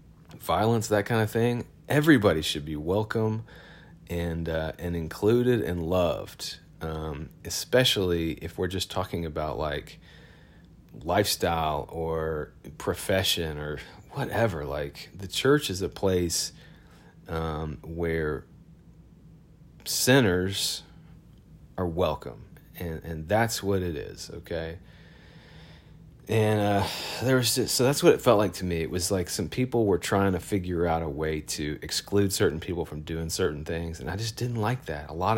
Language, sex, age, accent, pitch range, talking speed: English, male, 30-49, American, 80-110 Hz, 145 wpm